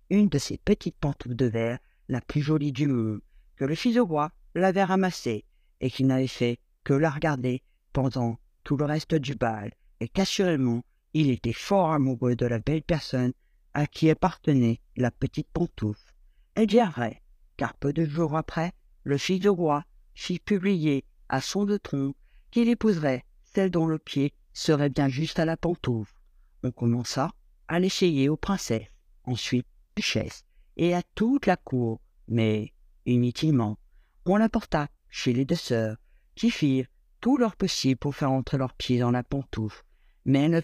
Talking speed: 165 wpm